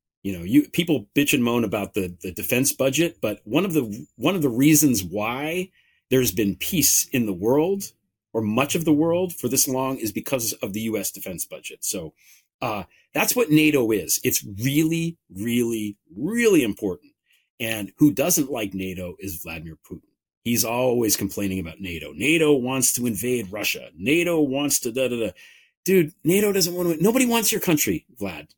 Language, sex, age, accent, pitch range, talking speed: English, male, 40-59, American, 110-170 Hz, 185 wpm